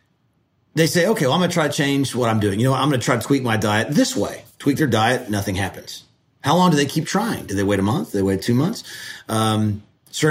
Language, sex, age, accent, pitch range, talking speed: English, male, 30-49, American, 110-150 Hz, 280 wpm